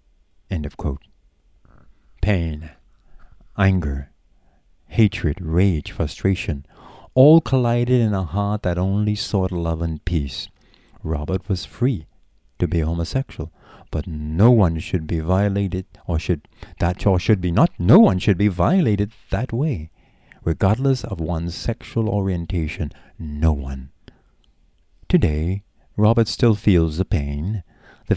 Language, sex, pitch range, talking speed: English, male, 80-105 Hz, 125 wpm